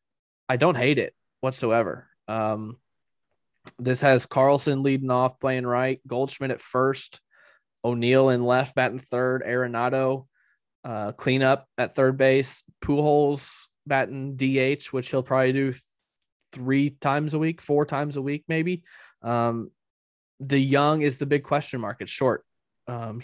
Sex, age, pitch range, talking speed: male, 20-39, 115-135 Hz, 140 wpm